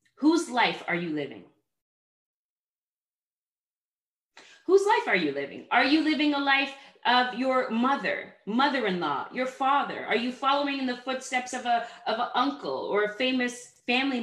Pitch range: 215-275 Hz